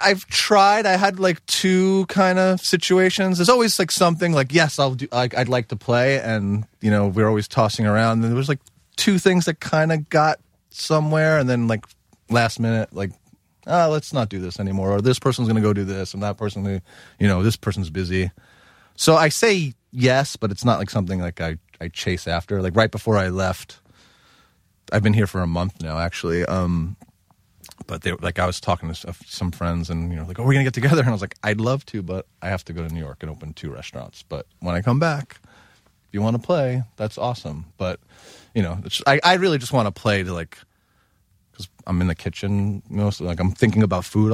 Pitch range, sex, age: 95-140 Hz, male, 30-49